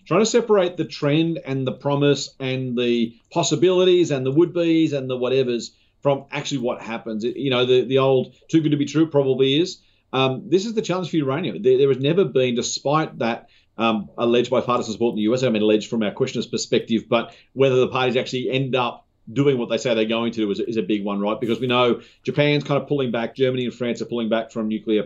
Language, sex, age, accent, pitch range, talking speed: English, male, 40-59, Australian, 110-140 Hz, 225 wpm